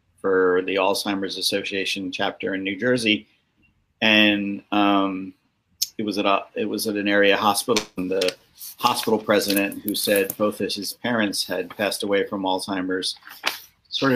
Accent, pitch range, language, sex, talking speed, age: American, 95-125 Hz, English, male, 155 wpm, 50-69